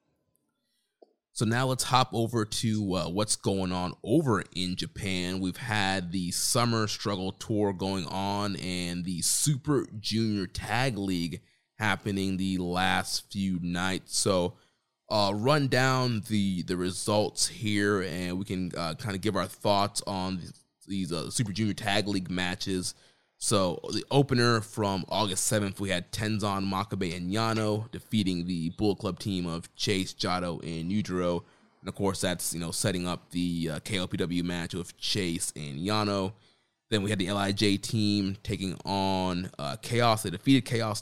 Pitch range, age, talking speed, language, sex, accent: 90-110 Hz, 20-39, 160 wpm, English, male, American